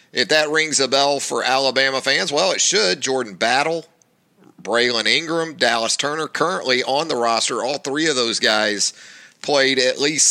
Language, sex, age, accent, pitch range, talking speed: English, male, 40-59, American, 125-175 Hz, 170 wpm